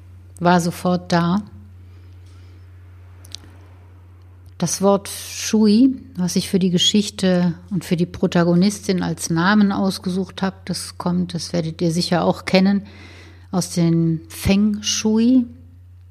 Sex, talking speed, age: female, 115 wpm, 60-79